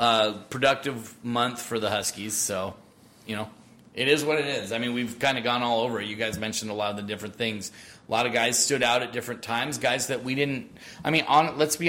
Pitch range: 110-130 Hz